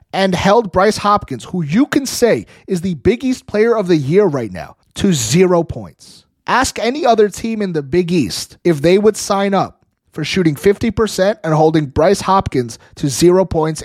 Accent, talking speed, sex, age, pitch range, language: American, 190 wpm, male, 30-49, 145-190 Hz, English